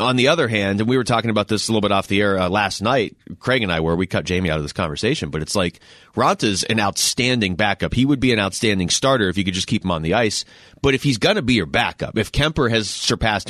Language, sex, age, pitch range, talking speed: English, male, 30-49, 105-135 Hz, 285 wpm